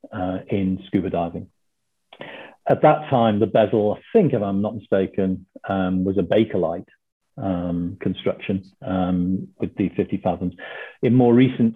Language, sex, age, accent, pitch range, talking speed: English, male, 50-69, British, 90-105 Hz, 145 wpm